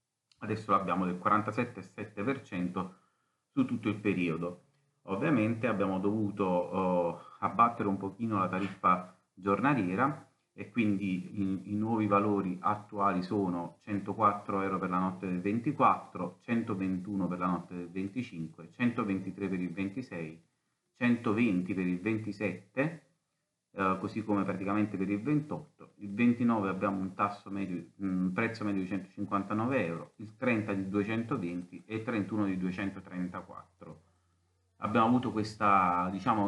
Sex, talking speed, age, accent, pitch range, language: male, 130 wpm, 30-49, native, 90-110 Hz, Italian